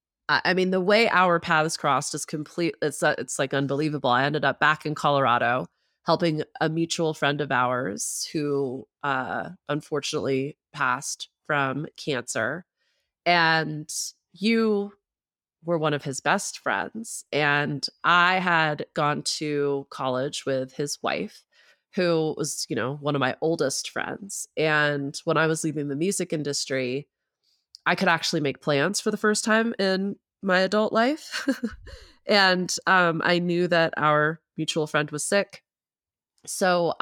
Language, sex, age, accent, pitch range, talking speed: English, female, 30-49, American, 140-170 Hz, 145 wpm